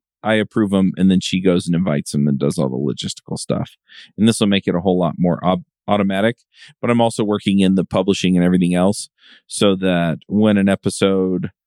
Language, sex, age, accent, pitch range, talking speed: English, male, 40-59, American, 90-105 Hz, 215 wpm